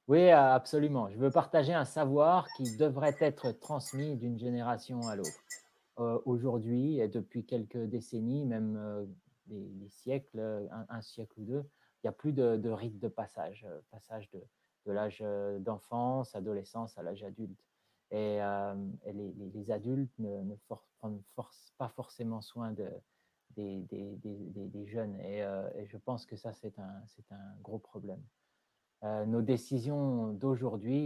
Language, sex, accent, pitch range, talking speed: French, male, French, 105-125 Hz, 165 wpm